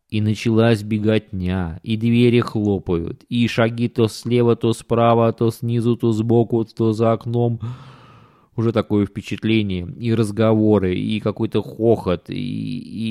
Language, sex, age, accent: Russian, male, 20-39, native